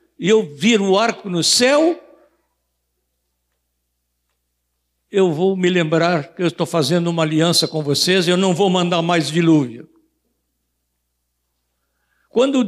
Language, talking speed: Portuguese, 125 wpm